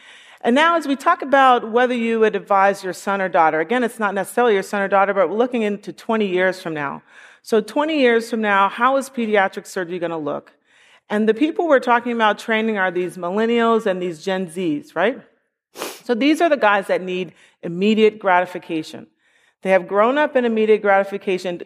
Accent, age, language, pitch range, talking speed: American, 40-59, English, 180-250 Hz, 200 wpm